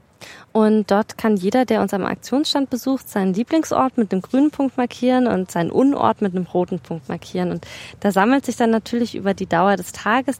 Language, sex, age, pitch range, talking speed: German, female, 20-39, 195-255 Hz, 200 wpm